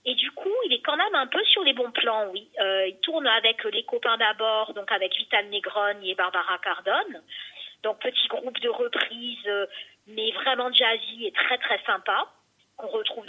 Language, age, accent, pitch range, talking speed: French, 40-59, French, 220-300 Hz, 200 wpm